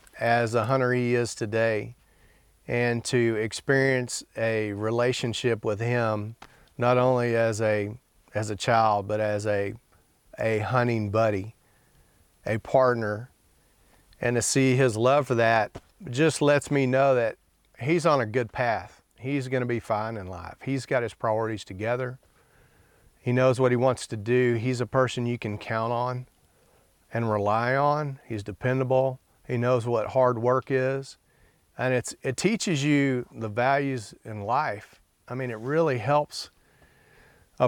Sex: male